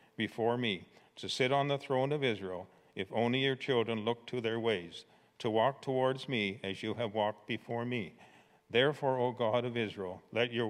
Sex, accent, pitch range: male, American, 105-135 Hz